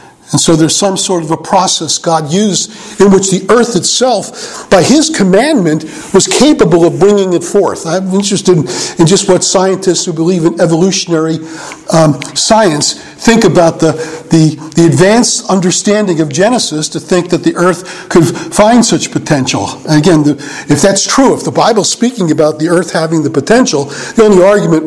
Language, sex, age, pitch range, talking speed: English, male, 50-69, 170-235 Hz, 175 wpm